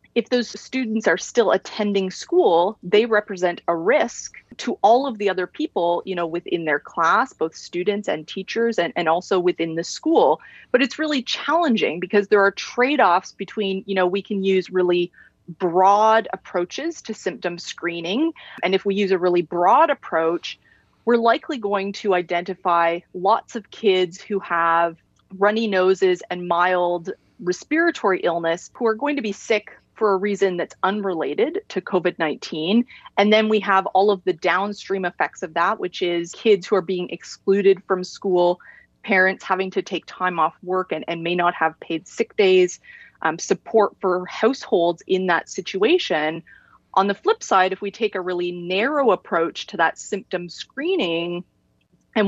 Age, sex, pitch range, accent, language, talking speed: 30-49, female, 175-215 Hz, American, English, 170 wpm